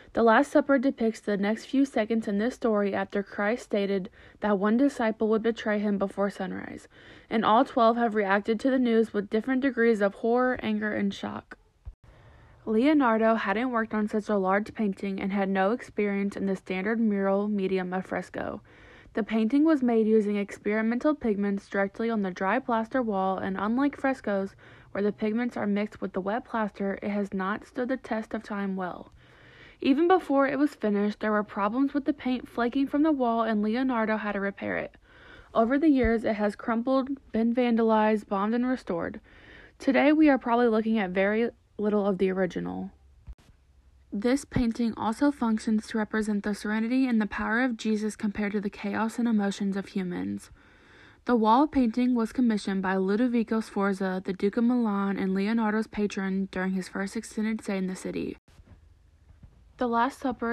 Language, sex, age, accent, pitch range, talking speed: English, female, 20-39, American, 200-235 Hz, 180 wpm